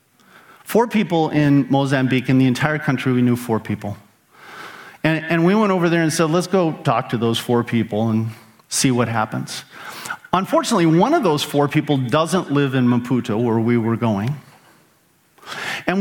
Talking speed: 170 wpm